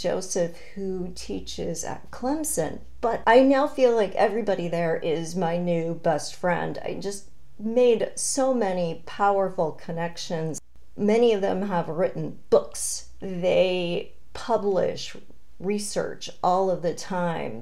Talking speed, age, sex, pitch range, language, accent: 125 wpm, 40-59, female, 175-235 Hz, English, American